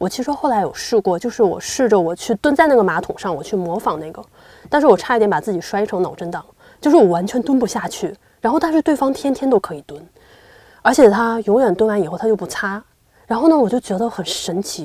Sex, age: female, 20-39